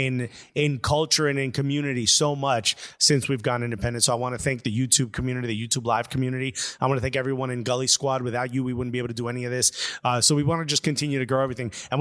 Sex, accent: male, American